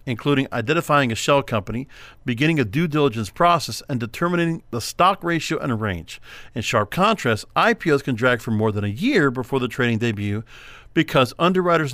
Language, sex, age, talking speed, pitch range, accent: English, male, 50-69, 170 wpm, 120-155 Hz, American